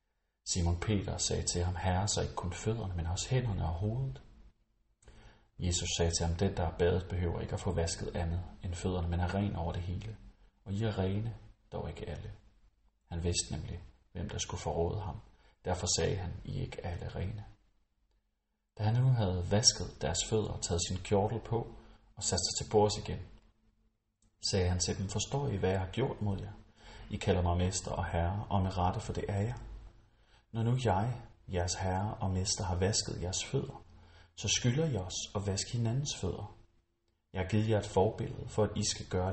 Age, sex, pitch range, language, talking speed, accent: 30-49, male, 90-110 Hz, Danish, 205 wpm, native